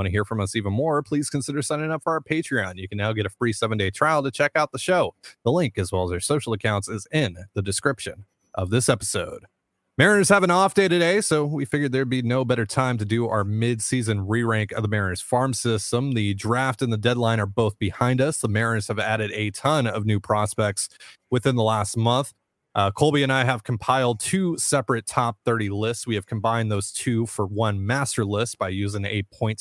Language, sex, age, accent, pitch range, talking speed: English, male, 30-49, American, 105-130 Hz, 225 wpm